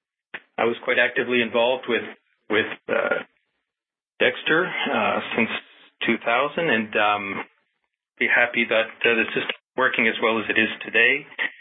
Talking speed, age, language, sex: 145 wpm, 40-59, English, male